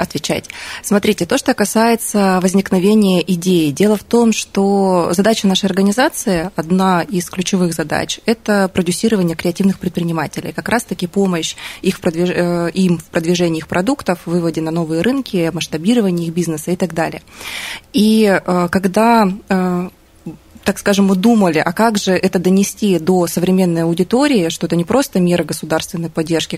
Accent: native